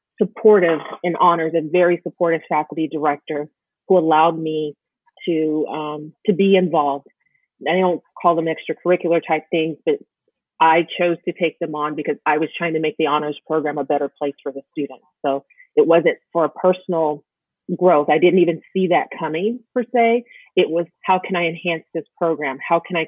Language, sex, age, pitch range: English, female, 30-49, 155-180 Hz